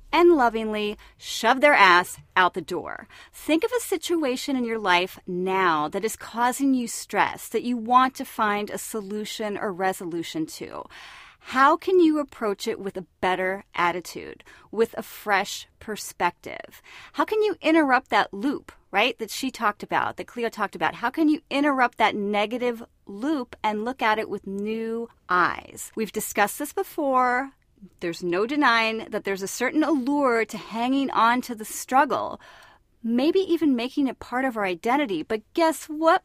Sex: female